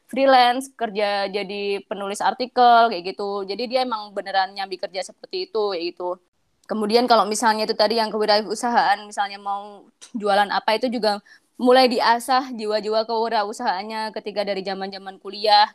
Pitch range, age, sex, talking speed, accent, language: 205-245 Hz, 20-39, female, 140 wpm, native, Indonesian